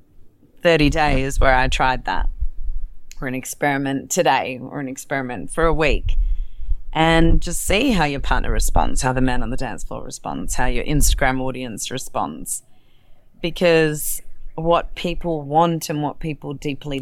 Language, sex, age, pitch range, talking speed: English, female, 30-49, 135-165 Hz, 155 wpm